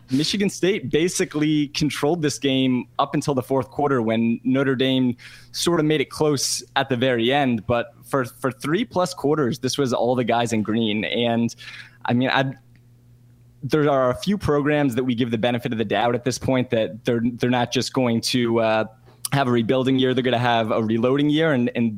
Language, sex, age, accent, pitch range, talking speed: English, male, 20-39, American, 120-140 Hz, 210 wpm